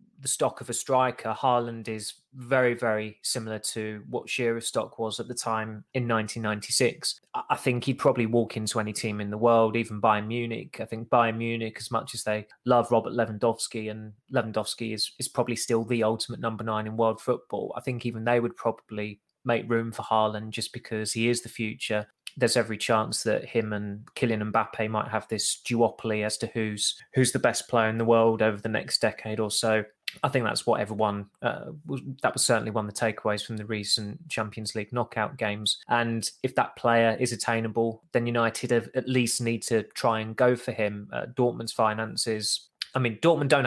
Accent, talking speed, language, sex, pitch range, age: British, 200 wpm, English, male, 110-120 Hz, 20-39